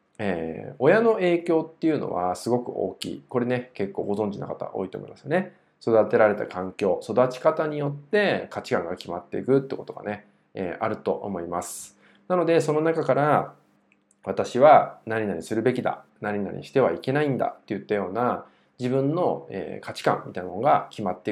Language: Japanese